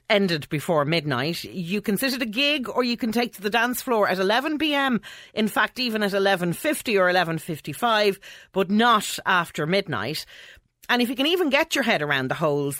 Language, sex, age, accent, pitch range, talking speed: English, female, 40-59, Irish, 150-210 Hz, 190 wpm